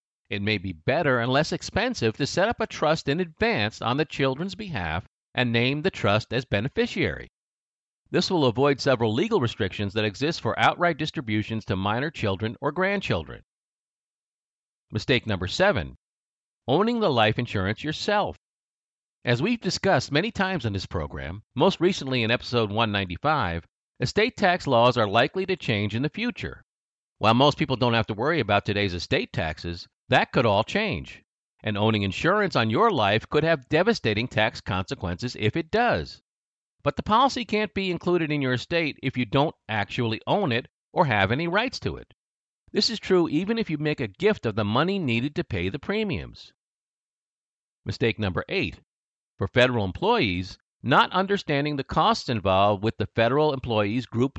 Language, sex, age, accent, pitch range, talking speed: English, male, 50-69, American, 105-165 Hz, 170 wpm